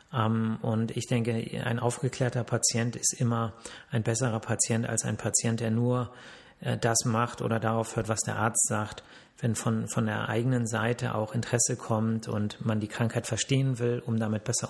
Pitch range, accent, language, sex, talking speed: 115-135 Hz, German, German, male, 175 wpm